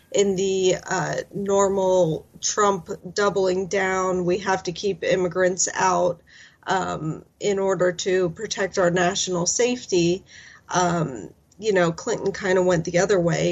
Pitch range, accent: 180-205 Hz, American